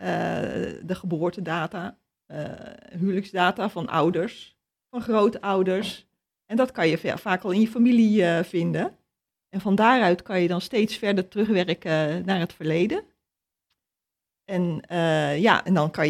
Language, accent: Dutch, Dutch